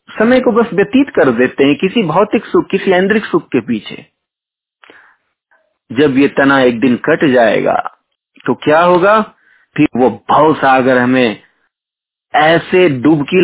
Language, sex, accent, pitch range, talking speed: Hindi, male, native, 145-225 Hz, 140 wpm